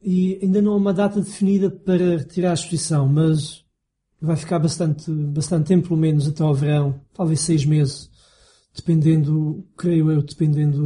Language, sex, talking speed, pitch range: Portuguese, male, 160 wpm, 155-190 Hz